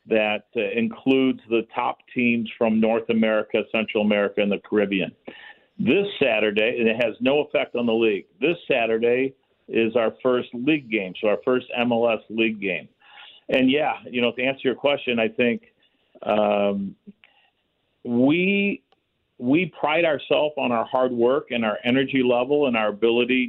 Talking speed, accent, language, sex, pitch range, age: 160 wpm, American, English, male, 115-140 Hz, 50-69